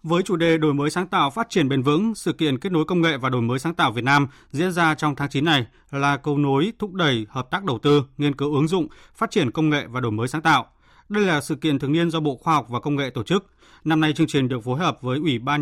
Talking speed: 295 wpm